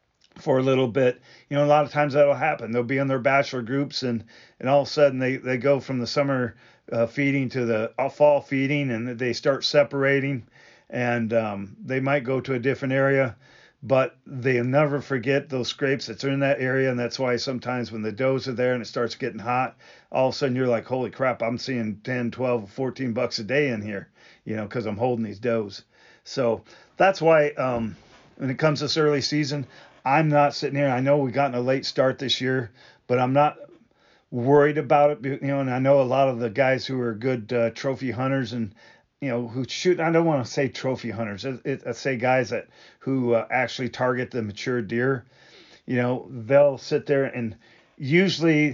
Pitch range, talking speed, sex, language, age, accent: 120-140 Hz, 220 wpm, male, English, 50-69, American